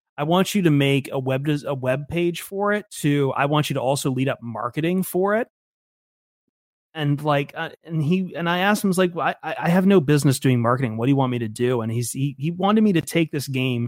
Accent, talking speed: American, 255 wpm